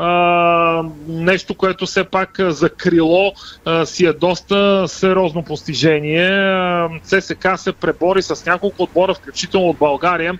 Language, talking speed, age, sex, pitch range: Bulgarian, 140 wpm, 40-59, male, 160-190 Hz